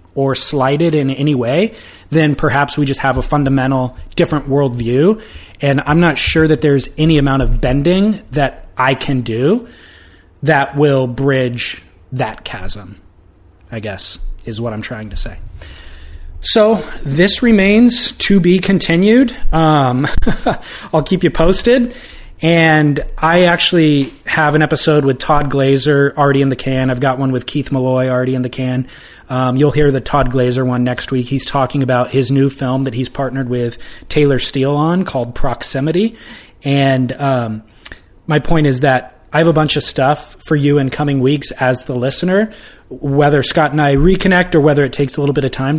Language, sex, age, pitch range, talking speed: English, male, 20-39, 130-155 Hz, 175 wpm